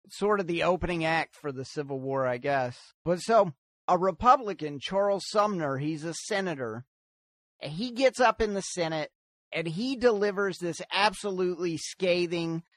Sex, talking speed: male, 150 wpm